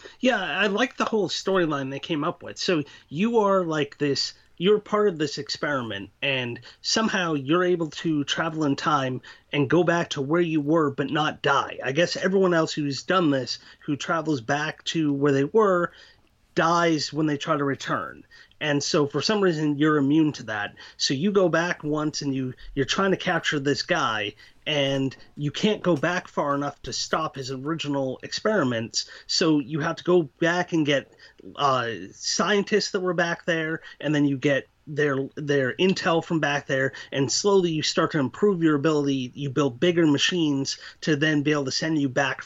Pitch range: 140-175 Hz